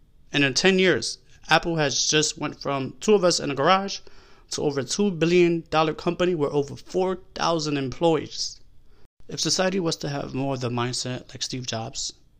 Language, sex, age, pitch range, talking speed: English, male, 20-39, 120-145 Hz, 180 wpm